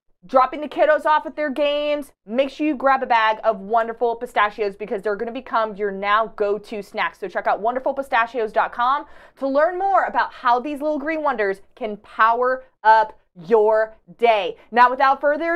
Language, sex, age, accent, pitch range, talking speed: English, female, 20-39, American, 225-300 Hz, 175 wpm